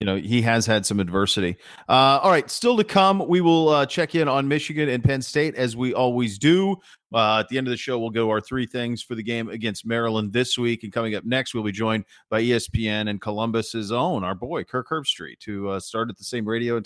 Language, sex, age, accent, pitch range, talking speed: English, male, 40-59, American, 110-130 Hz, 245 wpm